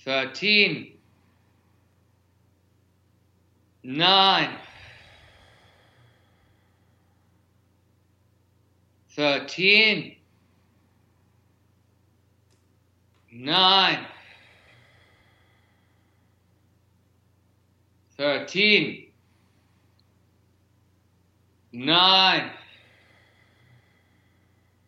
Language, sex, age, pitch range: English, male, 50-69, 100-110 Hz